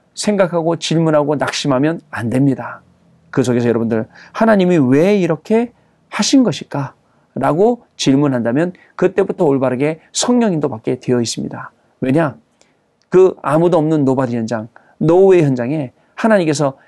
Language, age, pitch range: Korean, 40-59, 125-175 Hz